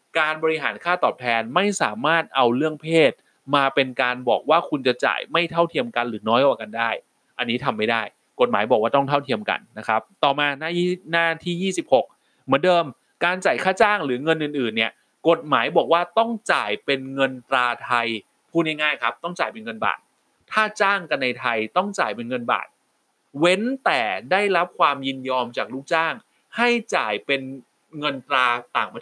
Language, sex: Thai, male